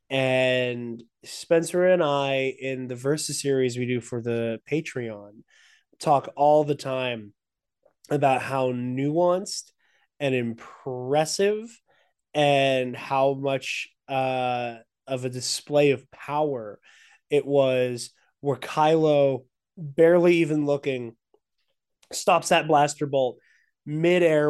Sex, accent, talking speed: male, American, 105 wpm